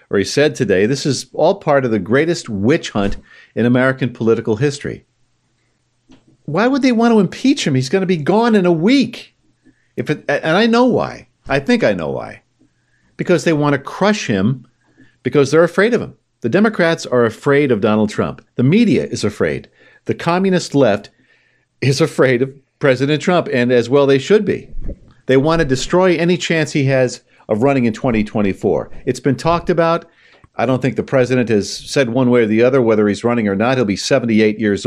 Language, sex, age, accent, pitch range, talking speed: English, male, 50-69, American, 125-175 Hz, 200 wpm